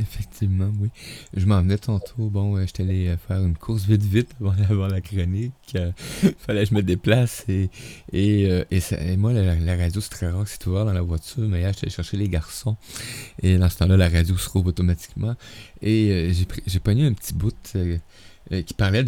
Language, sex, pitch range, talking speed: French, male, 95-125 Hz, 215 wpm